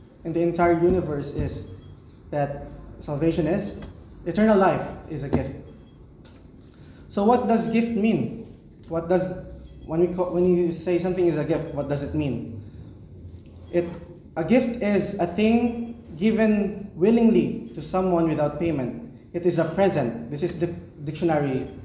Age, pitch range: 20-39, 150-195 Hz